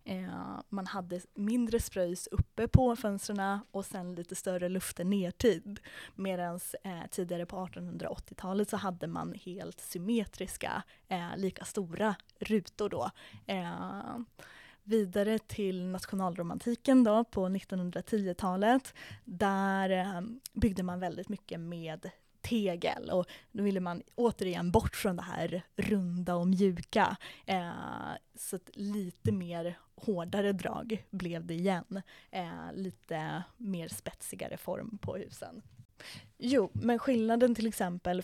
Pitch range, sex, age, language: 180-210 Hz, female, 20-39, Swedish